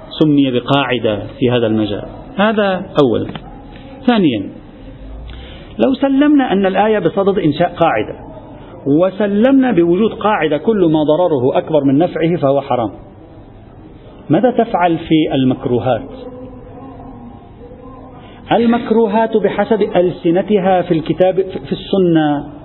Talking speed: 100 wpm